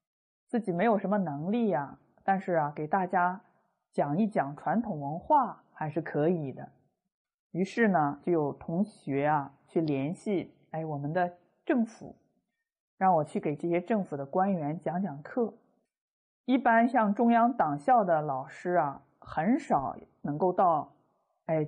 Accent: native